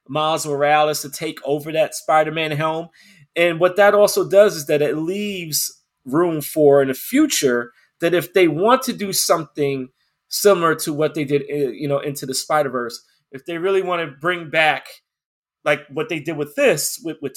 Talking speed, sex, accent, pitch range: 190 wpm, male, American, 135-170 Hz